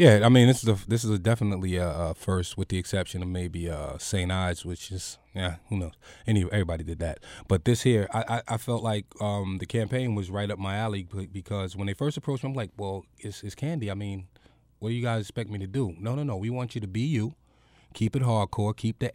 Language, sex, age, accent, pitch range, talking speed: English, male, 20-39, American, 95-125 Hz, 250 wpm